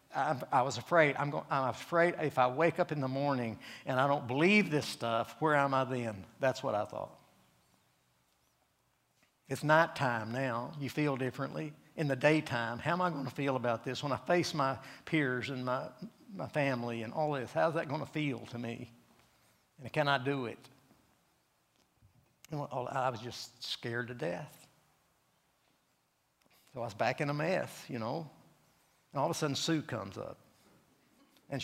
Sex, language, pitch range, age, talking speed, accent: male, English, 120-150 Hz, 60-79, 180 wpm, American